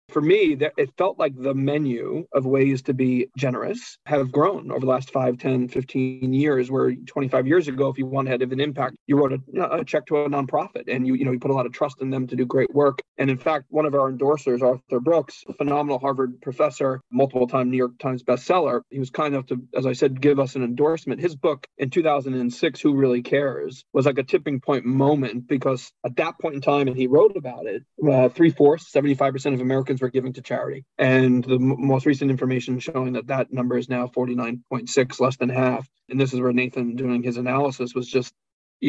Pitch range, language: 130-140 Hz, English